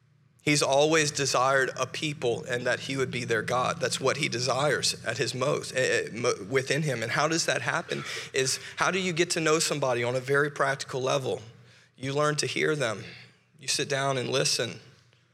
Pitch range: 120-140 Hz